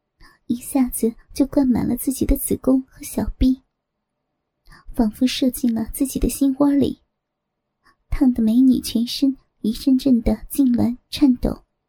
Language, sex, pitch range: Chinese, male, 245-275 Hz